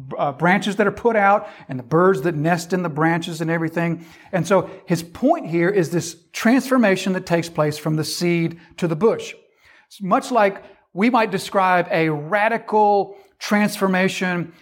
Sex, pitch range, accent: male, 165-205 Hz, American